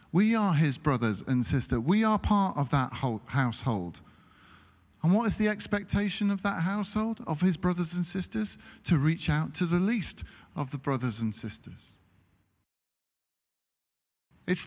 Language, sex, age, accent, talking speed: English, male, 40-59, British, 150 wpm